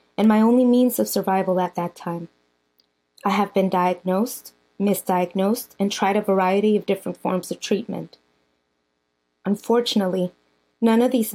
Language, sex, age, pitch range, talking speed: English, female, 20-39, 175-220 Hz, 145 wpm